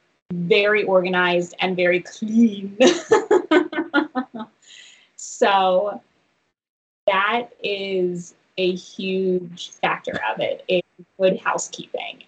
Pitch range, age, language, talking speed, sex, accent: 180-225 Hz, 20-39, English, 80 wpm, female, American